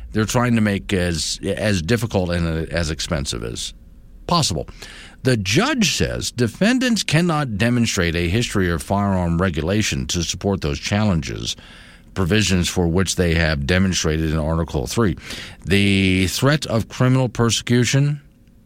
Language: English